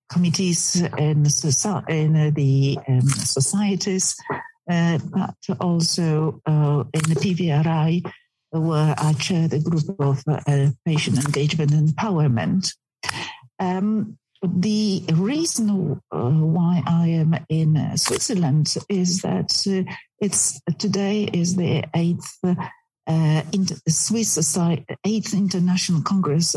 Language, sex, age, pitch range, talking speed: English, female, 60-79, 150-180 Hz, 115 wpm